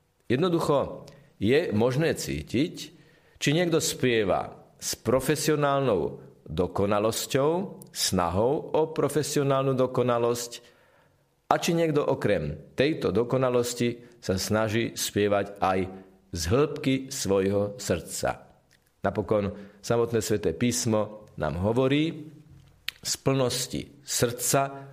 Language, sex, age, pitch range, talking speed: Slovak, male, 50-69, 100-140 Hz, 90 wpm